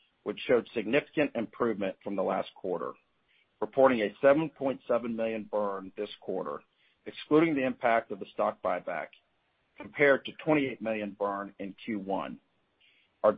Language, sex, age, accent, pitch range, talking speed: English, male, 50-69, American, 105-135 Hz, 135 wpm